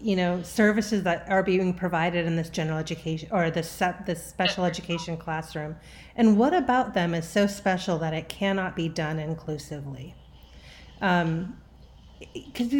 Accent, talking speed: American, 145 wpm